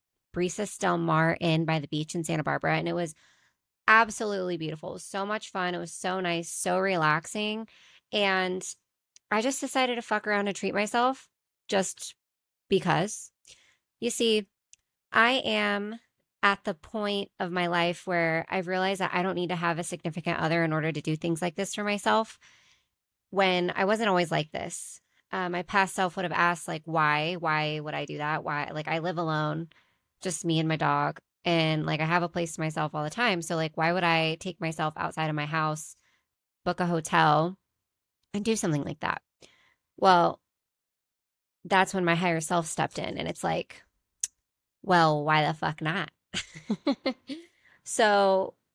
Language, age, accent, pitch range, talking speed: English, 20-39, American, 160-205 Hz, 180 wpm